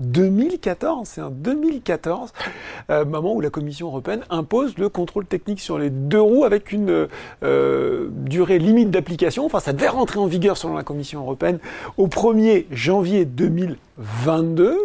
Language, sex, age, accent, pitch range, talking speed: French, male, 40-59, French, 140-200 Hz, 150 wpm